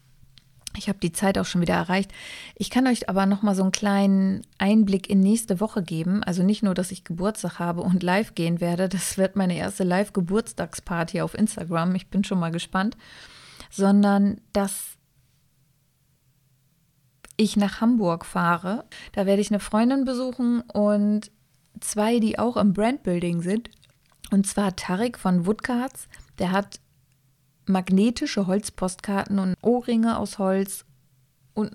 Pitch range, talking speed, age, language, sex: 175-210 Hz, 145 wpm, 20-39, German, female